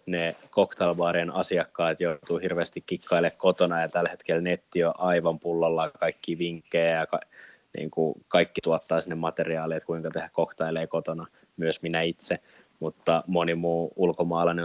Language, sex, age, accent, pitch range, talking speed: Finnish, male, 20-39, native, 80-90 Hz, 145 wpm